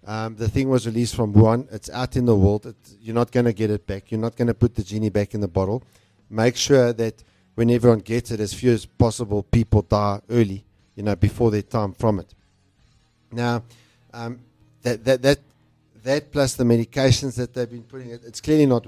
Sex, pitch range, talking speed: male, 110-125 Hz, 215 wpm